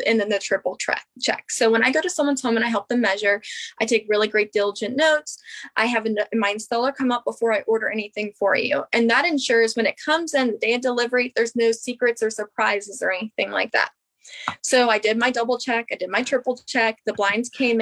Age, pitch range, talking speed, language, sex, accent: 20-39, 225-270 Hz, 240 wpm, English, female, American